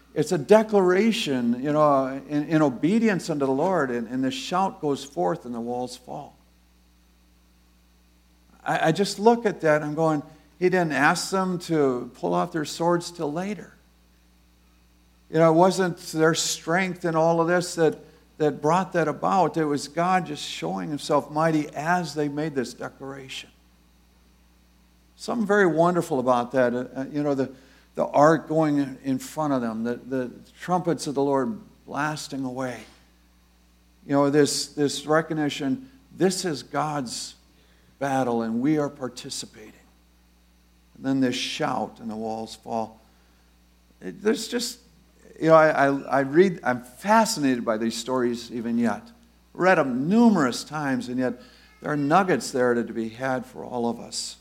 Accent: American